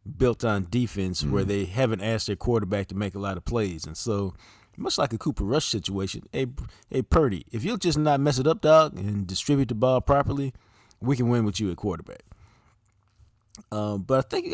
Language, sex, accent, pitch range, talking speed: English, male, American, 100-130 Hz, 215 wpm